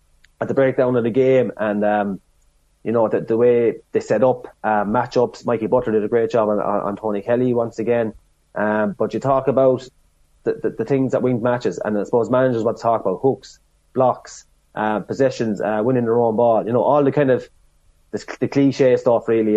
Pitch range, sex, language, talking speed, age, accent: 110-135 Hz, male, English, 220 wpm, 30-49, Irish